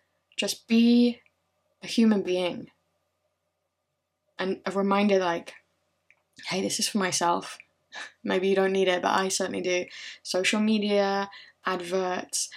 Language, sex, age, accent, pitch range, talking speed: English, female, 10-29, British, 185-225 Hz, 125 wpm